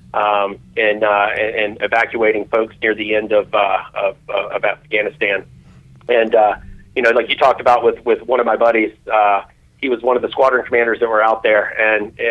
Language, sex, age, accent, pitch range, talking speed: English, male, 40-59, American, 110-150 Hz, 205 wpm